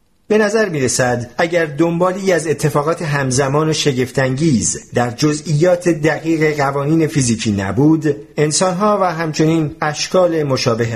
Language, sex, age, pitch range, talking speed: Persian, male, 50-69, 135-185 Hz, 115 wpm